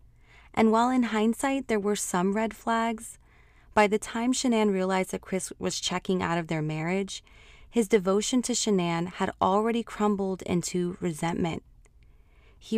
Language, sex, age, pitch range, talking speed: English, female, 20-39, 160-195 Hz, 150 wpm